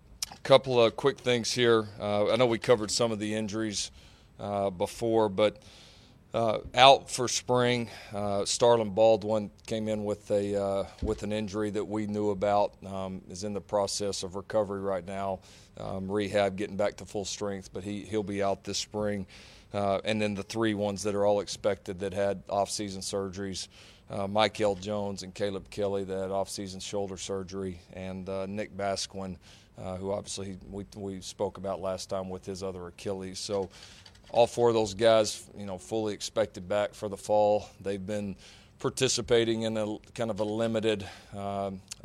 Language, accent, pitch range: English, American, 100-110 Hz